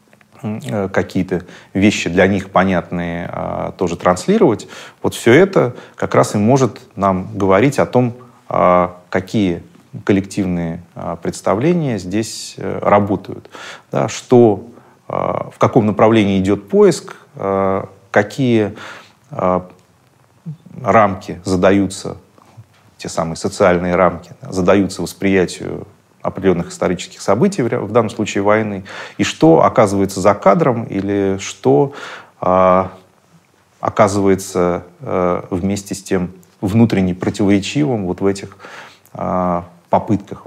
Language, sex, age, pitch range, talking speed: Russian, male, 30-49, 90-110 Hz, 95 wpm